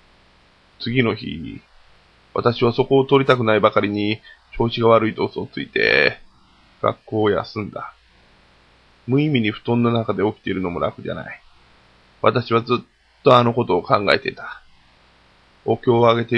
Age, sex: 20-39, male